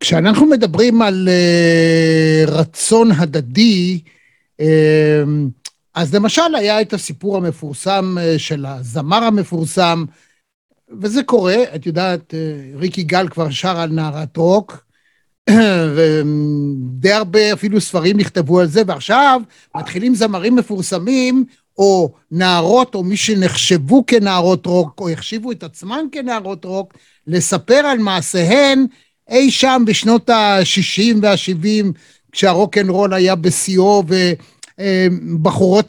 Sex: male